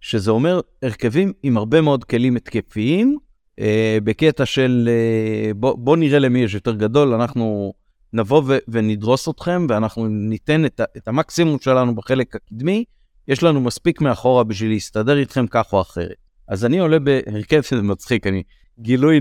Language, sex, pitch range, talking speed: Hebrew, male, 110-135 Hz, 160 wpm